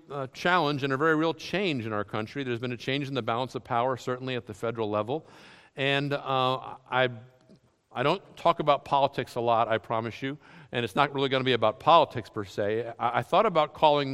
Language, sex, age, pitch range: English, male, 50-69, 110-150 Hz